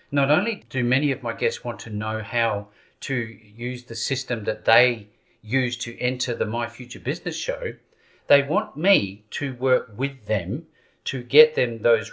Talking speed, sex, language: 180 wpm, male, English